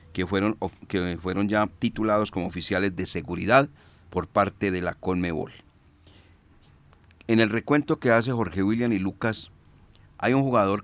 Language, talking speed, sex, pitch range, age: Spanish, 150 wpm, male, 90-110 Hz, 40-59